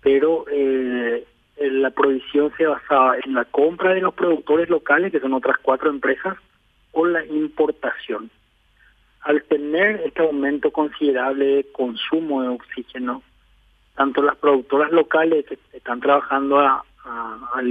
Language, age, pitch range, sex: Spanish, 40-59, 130-160 Hz, male